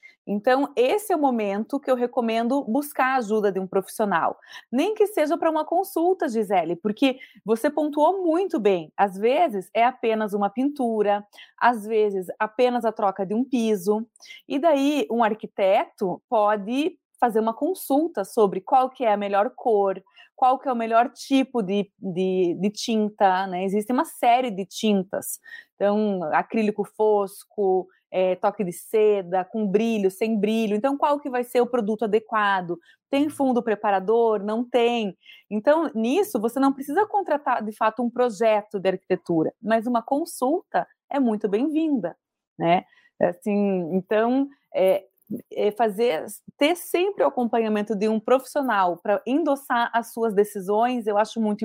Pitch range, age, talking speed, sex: 205-275 Hz, 20-39, 150 wpm, female